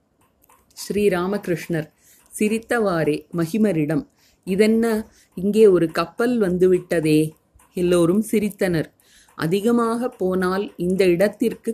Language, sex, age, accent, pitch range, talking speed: Tamil, female, 30-49, native, 170-215 Hz, 75 wpm